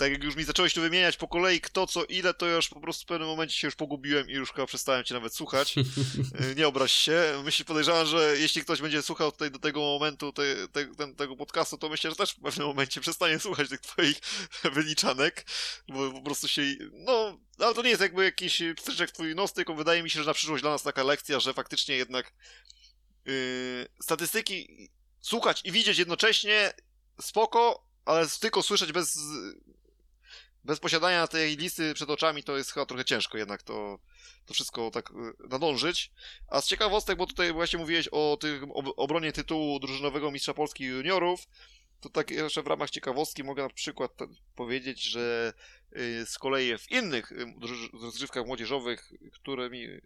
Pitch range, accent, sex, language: 130-165 Hz, native, male, Polish